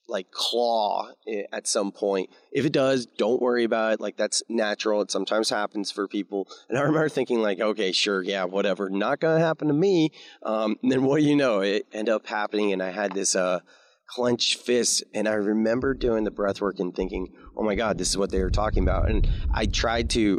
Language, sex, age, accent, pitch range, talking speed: English, male, 30-49, American, 95-115 Hz, 225 wpm